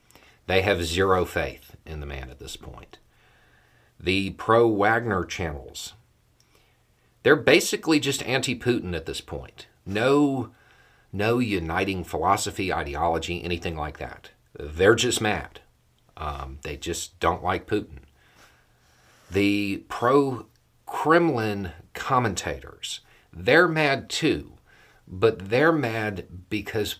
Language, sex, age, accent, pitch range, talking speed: English, male, 50-69, American, 85-110 Hz, 105 wpm